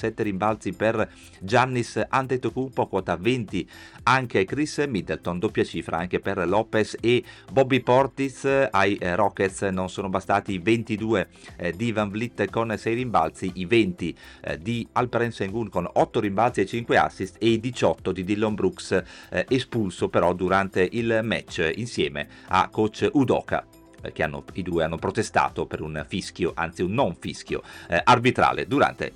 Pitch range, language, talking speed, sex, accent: 95-120 Hz, Italian, 150 wpm, male, native